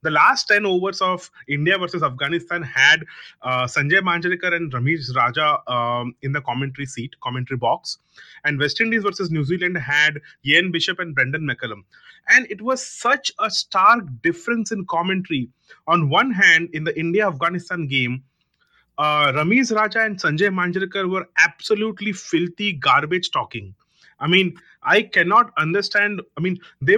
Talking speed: 155 wpm